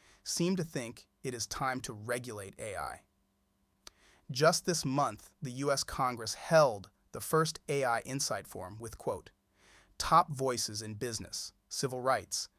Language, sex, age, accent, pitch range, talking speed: English, male, 30-49, American, 105-150 Hz, 140 wpm